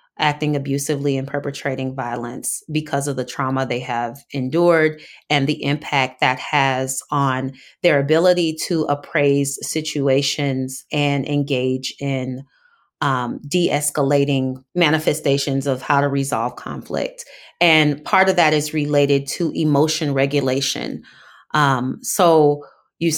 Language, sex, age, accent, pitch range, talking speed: English, female, 30-49, American, 135-155 Hz, 120 wpm